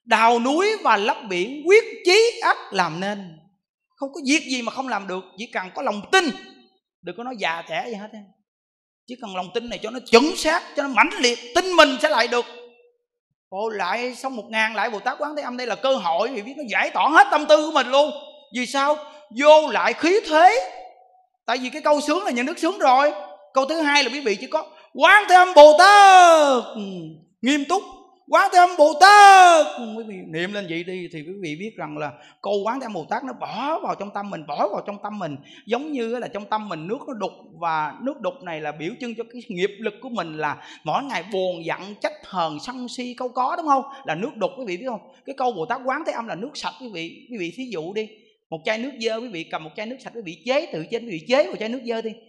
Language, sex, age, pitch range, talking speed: Vietnamese, male, 30-49, 200-290 Hz, 250 wpm